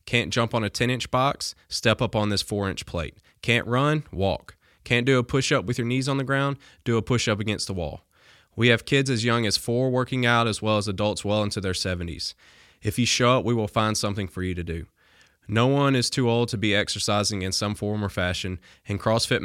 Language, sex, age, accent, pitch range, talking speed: English, male, 20-39, American, 100-120 Hz, 230 wpm